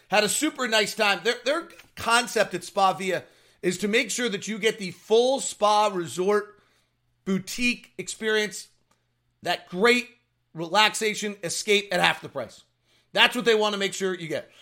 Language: English